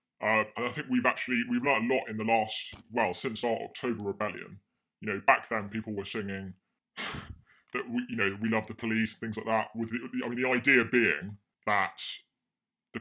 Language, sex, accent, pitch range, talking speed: English, female, British, 100-115 Hz, 210 wpm